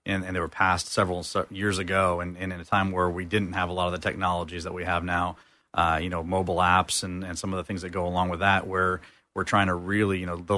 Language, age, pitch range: English, 30-49, 90-100 Hz